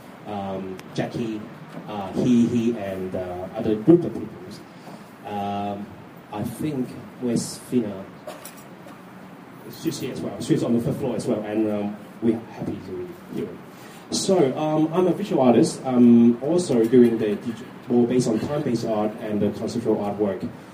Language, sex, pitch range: Chinese, male, 105-125 Hz